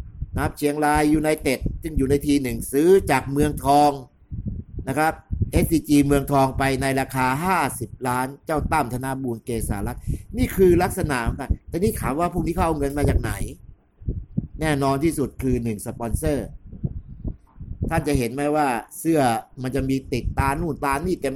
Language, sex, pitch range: English, male, 120-150 Hz